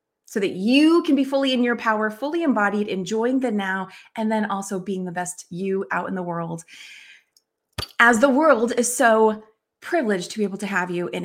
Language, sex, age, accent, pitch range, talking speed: English, female, 30-49, American, 195-275 Hz, 205 wpm